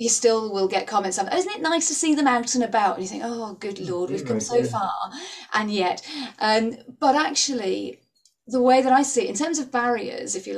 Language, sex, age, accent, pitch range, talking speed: English, female, 30-49, British, 185-250 Hz, 240 wpm